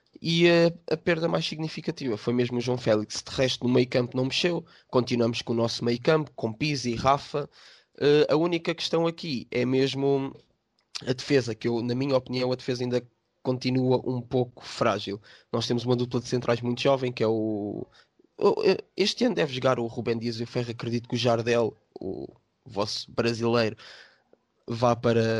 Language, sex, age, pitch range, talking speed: Portuguese, male, 20-39, 115-130 Hz, 180 wpm